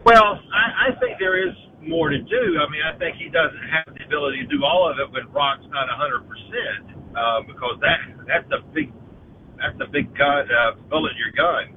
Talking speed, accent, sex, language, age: 225 wpm, American, male, English, 50-69